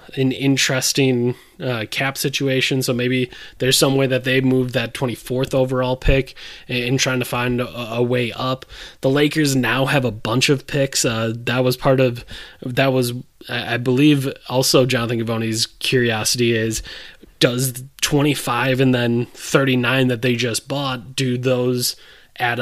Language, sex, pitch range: English, male, 125-140 Hz